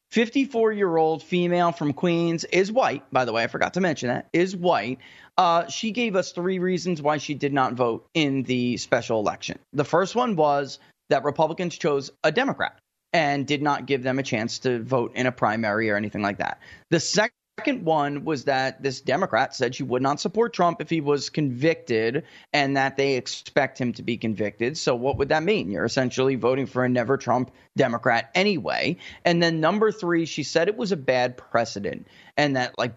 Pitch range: 125-170 Hz